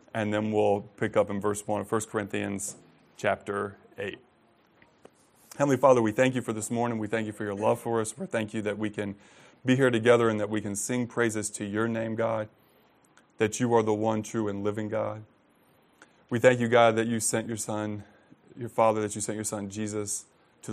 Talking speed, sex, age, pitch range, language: 215 wpm, male, 20-39, 105-115 Hz, English